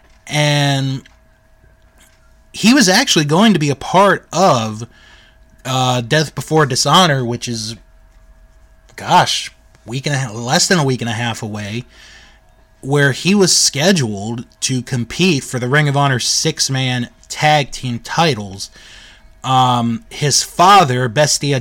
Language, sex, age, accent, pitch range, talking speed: English, male, 30-49, American, 115-145 Hz, 135 wpm